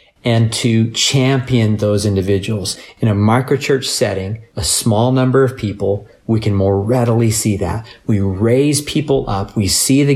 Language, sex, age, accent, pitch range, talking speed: English, male, 40-59, American, 105-130 Hz, 160 wpm